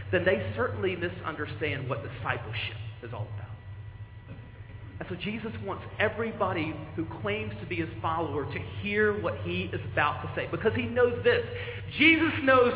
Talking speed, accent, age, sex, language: 160 wpm, American, 40-59, male, English